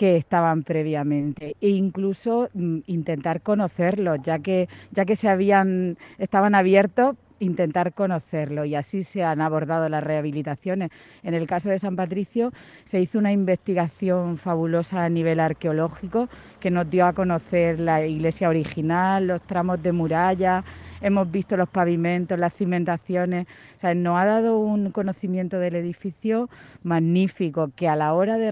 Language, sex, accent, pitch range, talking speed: Spanish, female, Spanish, 160-185 Hz, 150 wpm